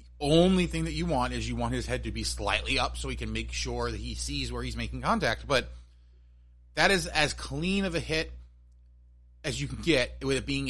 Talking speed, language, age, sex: 230 wpm, English, 30-49, male